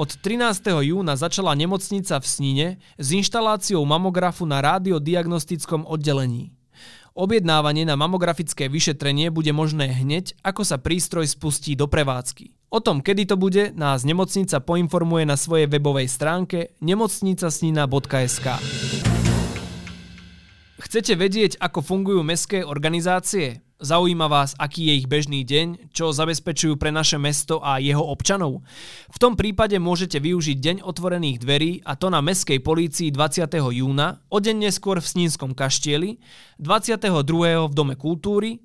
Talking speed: 130 wpm